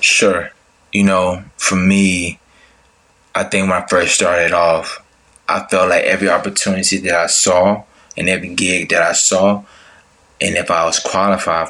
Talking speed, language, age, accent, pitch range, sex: 160 wpm, English, 20-39, American, 85-100 Hz, male